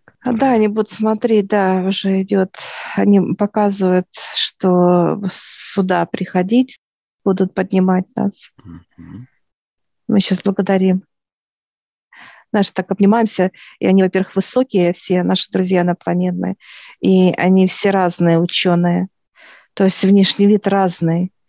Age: 50-69